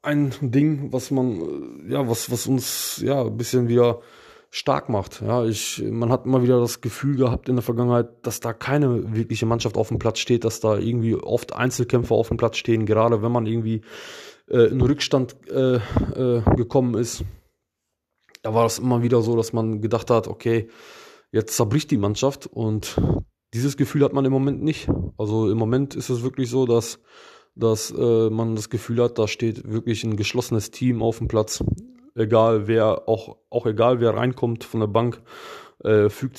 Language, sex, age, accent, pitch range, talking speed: German, male, 20-39, German, 110-125 Hz, 185 wpm